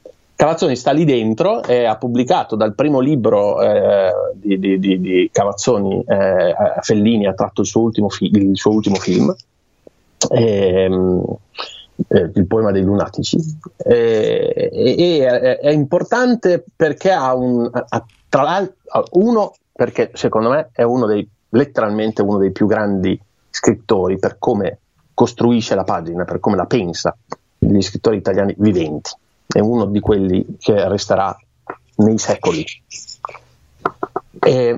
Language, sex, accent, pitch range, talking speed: Italian, male, native, 100-140 Hz, 140 wpm